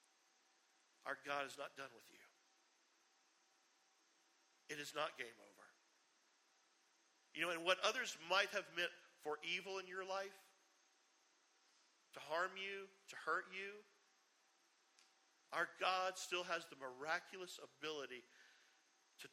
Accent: American